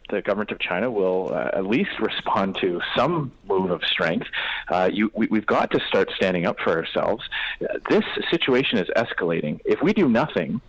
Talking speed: 190 wpm